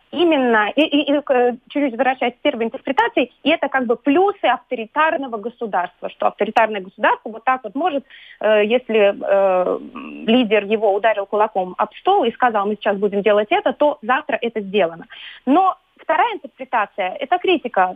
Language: Russian